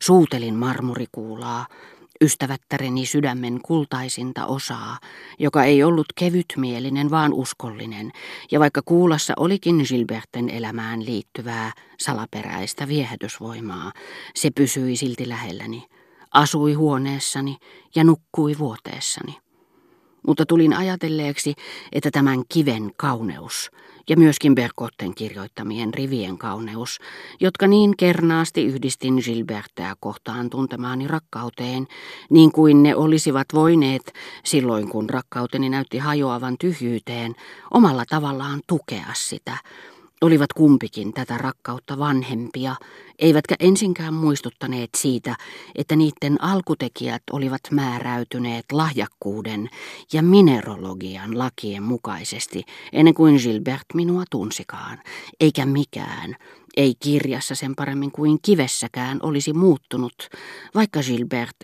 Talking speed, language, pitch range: 100 wpm, Finnish, 120-155 Hz